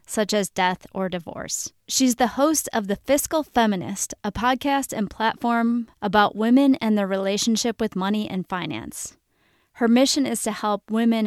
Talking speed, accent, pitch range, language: 165 wpm, American, 200-245 Hz, English